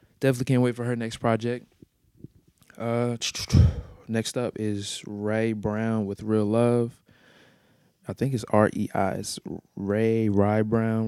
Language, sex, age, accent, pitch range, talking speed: English, male, 20-39, American, 100-120 Hz, 130 wpm